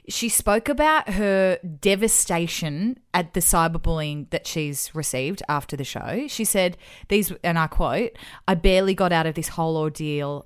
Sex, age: female, 30-49